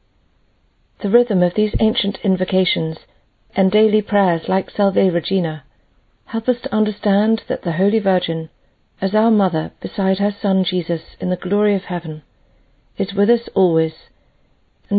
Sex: female